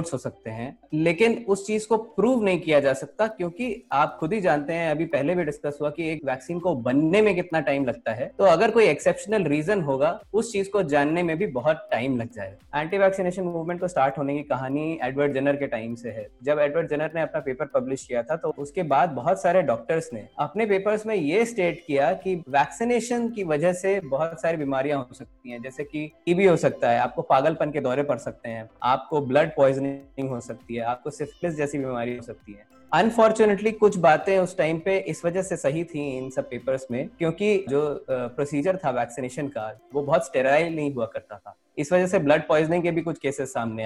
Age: 20-39